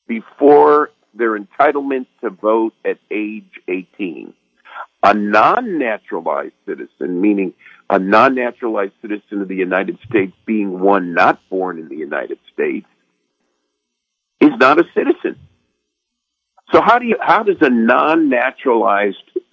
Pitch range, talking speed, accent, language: 100-155 Hz, 130 wpm, American, English